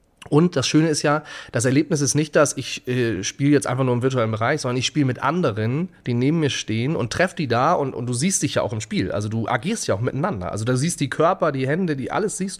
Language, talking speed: German, 270 wpm